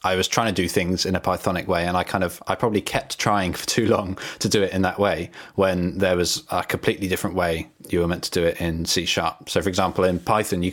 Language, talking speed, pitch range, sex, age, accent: English, 275 wpm, 85-100 Hz, male, 20-39, British